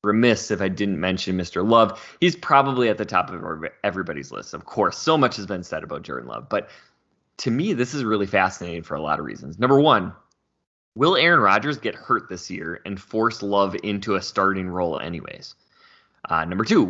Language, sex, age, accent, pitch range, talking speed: English, male, 20-39, American, 100-120 Hz, 200 wpm